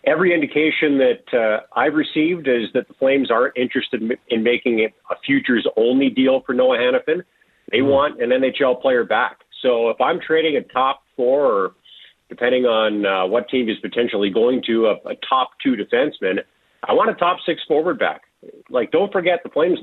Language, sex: English, male